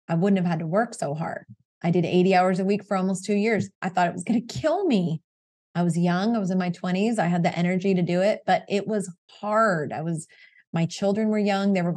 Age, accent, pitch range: 20-39, American, 170-200 Hz